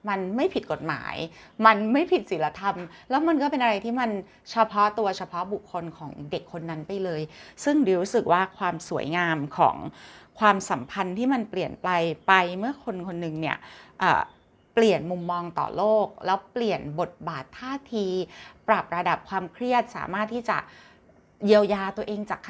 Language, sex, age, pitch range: Thai, female, 30-49, 180-225 Hz